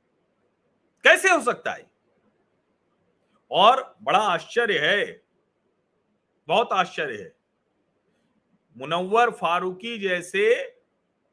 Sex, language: male, Hindi